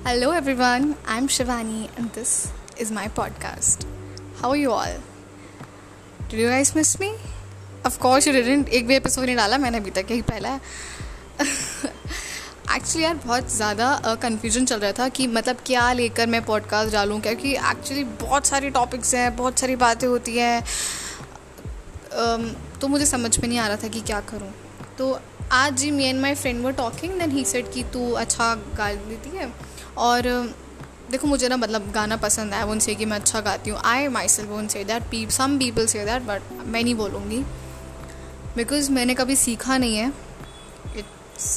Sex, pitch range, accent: female, 220-260 Hz, Indian